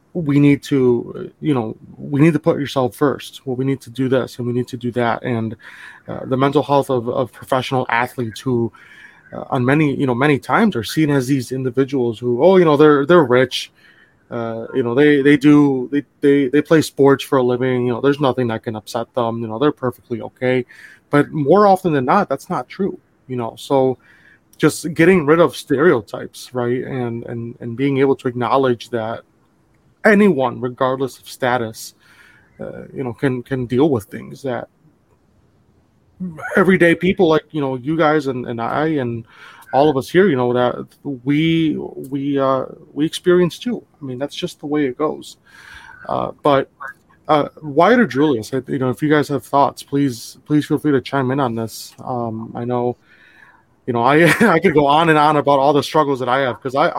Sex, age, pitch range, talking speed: male, 20-39, 125-150 Hz, 200 wpm